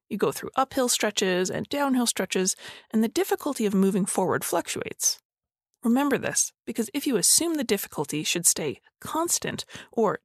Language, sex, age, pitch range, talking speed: English, female, 30-49, 190-255 Hz, 160 wpm